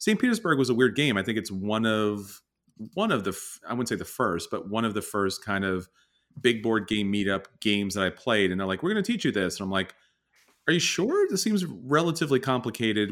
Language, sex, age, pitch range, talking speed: English, male, 30-49, 95-125 Hz, 240 wpm